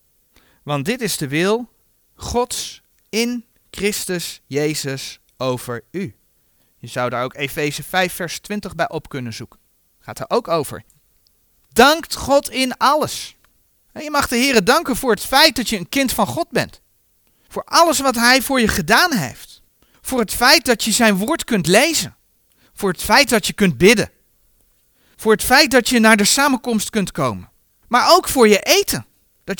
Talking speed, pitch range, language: 175 wpm, 195-280 Hz, Dutch